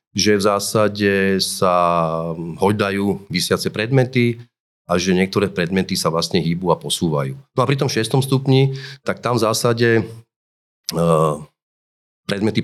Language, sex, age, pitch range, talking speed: Slovak, male, 30-49, 90-110 Hz, 130 wpm